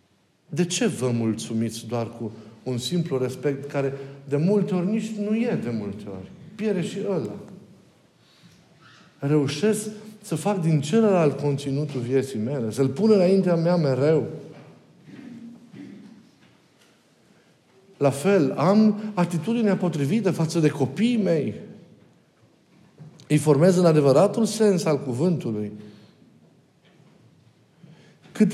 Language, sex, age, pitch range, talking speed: Romanian, male, 50-69, 135-195 Hz, 105 wpm